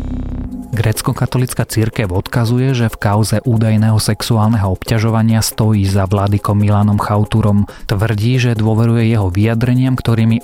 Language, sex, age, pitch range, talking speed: Slovak, male, 30-49, 100-115 Hz, 120 wpm